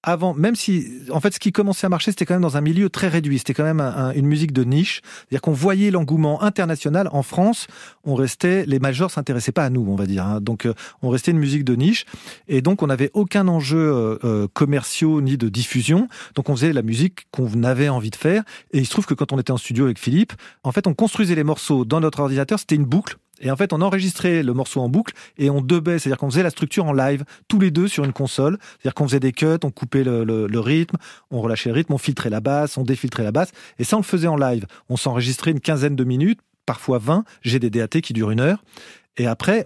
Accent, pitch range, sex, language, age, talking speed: French, 125-175 Hz, male, French, 40-59, 260 wpm